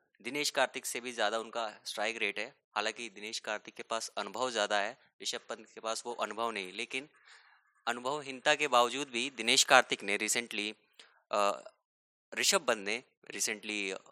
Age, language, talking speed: 20-39, English, 155 wpm